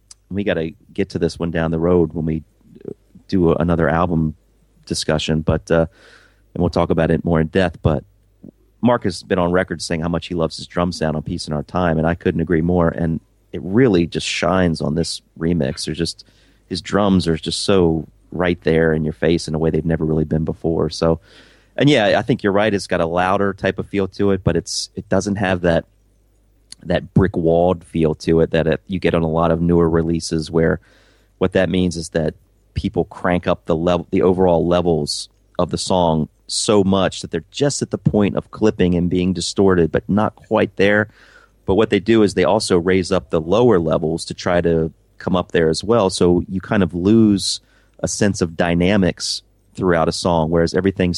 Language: English